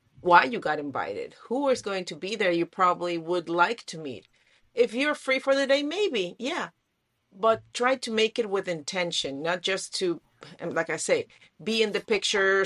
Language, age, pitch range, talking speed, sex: English, 40-59, 175-230 Hz, 195 wpm, female